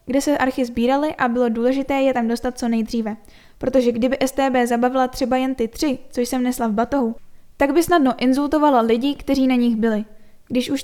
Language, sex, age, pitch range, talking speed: Czech, female, 10-29, 235-270 Hz, 200 wpm